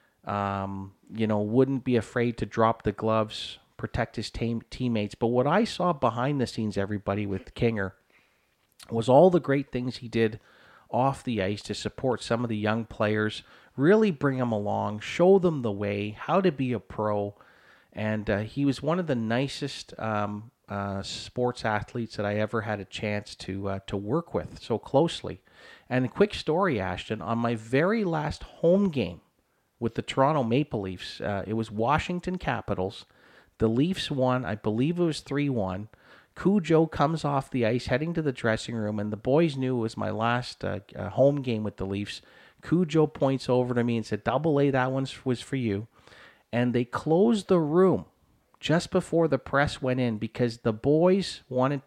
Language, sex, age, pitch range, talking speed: English, male, 40-59, 105-140 Hz, 185 wpm